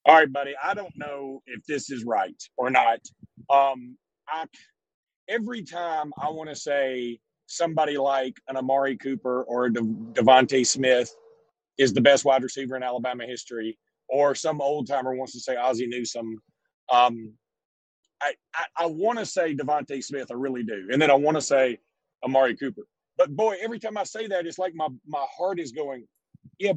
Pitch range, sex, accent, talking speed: 135-210 Hz, male, American, 185 wpm